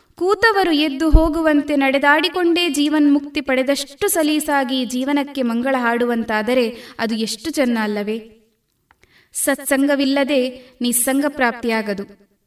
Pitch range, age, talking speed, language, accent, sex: 240-295 Hz, 20-39, 75 wpm, Kannada, native, female